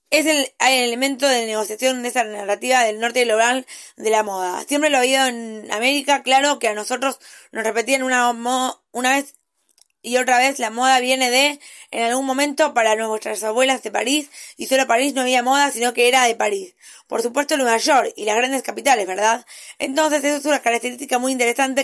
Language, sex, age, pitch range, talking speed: Spanish, female, 20-39, 230-275 Hz, 200 wpm